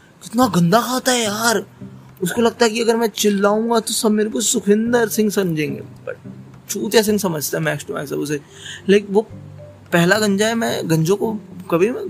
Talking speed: 160 wpm